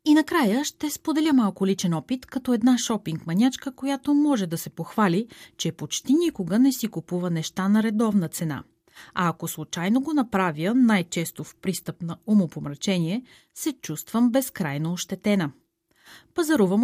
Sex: female